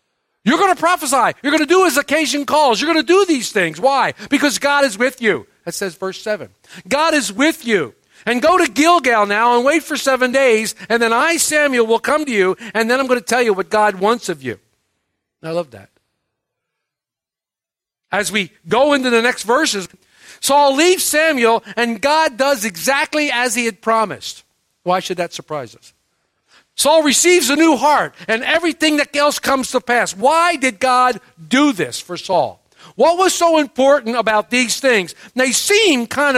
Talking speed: 195 wpm